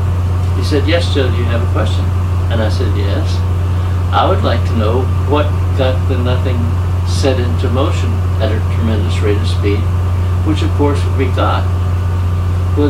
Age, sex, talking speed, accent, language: 60-79, male, 175 wpm, American, English